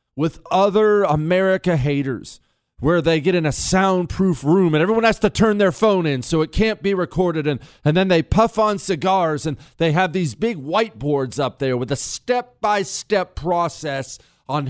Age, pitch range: 40-59, 125-185 Hz